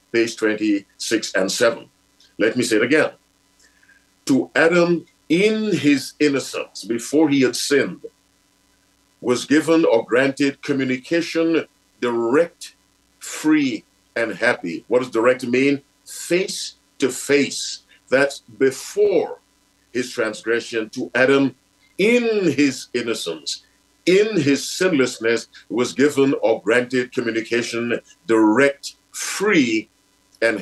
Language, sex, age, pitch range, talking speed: English, male, 50-69, 120-165 Hz, 105 wpm